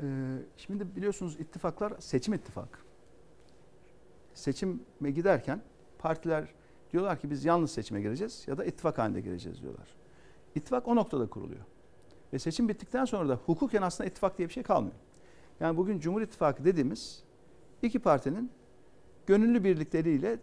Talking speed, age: 135 wpm, 60-79